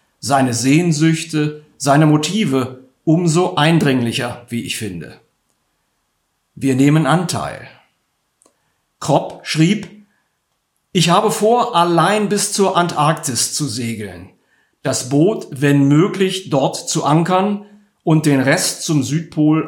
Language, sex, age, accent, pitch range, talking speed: German, male, 50-69, German, 140-180 Hz, 105 wpm